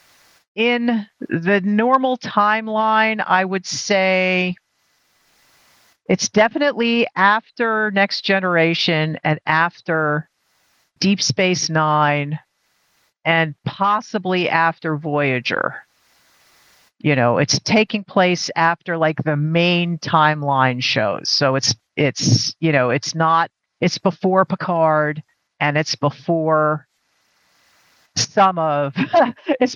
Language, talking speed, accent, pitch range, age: English, 95 wpm, American, 150-195 Hz, 50-69